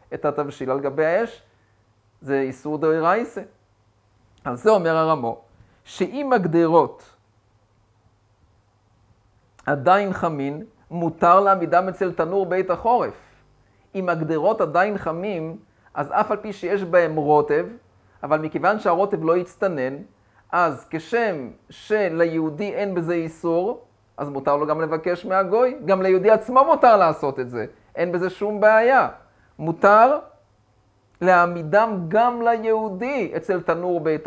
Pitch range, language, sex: 140-200 Hz, Hebrew, male